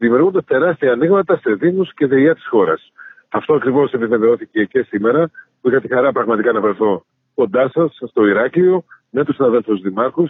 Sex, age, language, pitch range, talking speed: male, 40-59, Greek, 120-175 Hz, 170 wpm